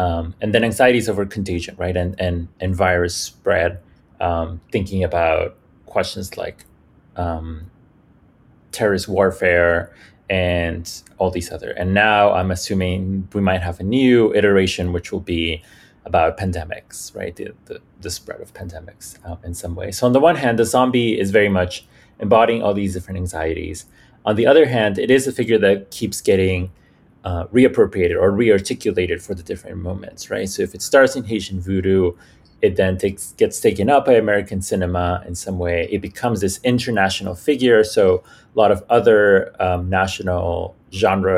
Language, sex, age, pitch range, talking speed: English, male, 30-49, 90-115 Hz, 170 wpm